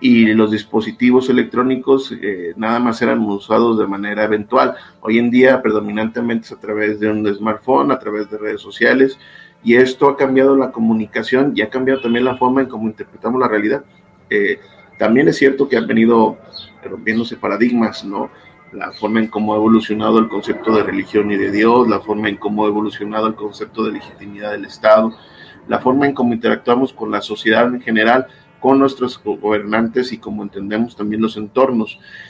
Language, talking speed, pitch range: Spanish, 180 wpm, 105-130 Hz